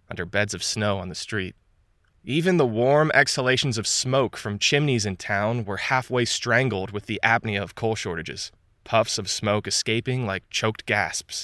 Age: 20-39